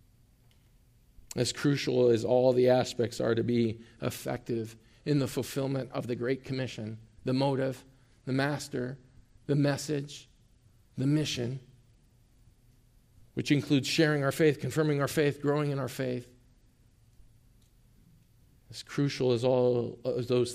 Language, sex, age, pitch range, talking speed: English, male, 40-59, 115-130 Hz, 125 wpm